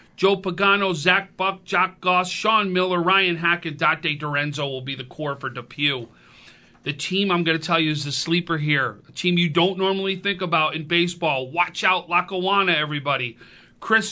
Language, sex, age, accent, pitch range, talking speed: English, male, 40-59, American, 155-190 Hz, 185 wpm